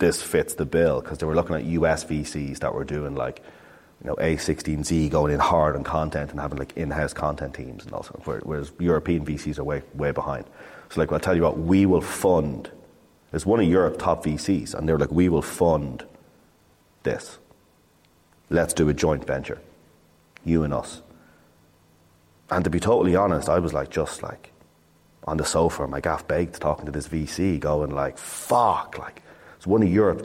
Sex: male